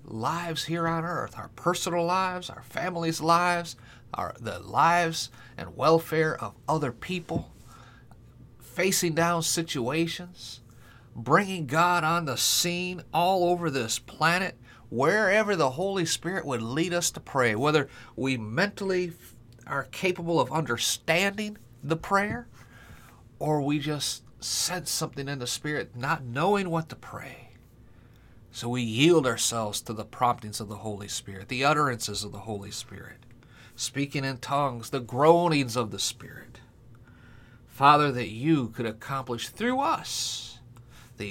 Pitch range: 115-160 Hz